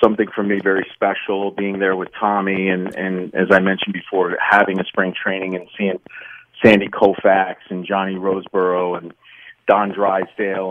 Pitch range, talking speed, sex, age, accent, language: 95-125 Hz, 160 wpm, male, 40-59, American, English